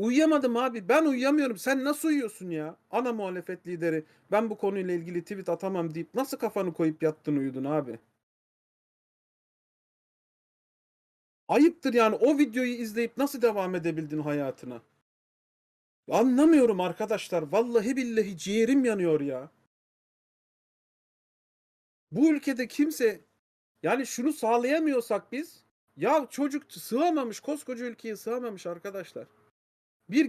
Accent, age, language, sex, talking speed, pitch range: native, 40-59, Turkish, male, 110 wpm, 190-275 Hz